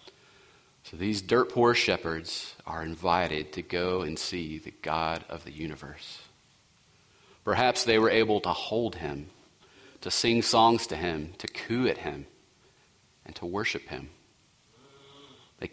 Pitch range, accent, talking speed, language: 80-115 Hz, American, 135 wpm, English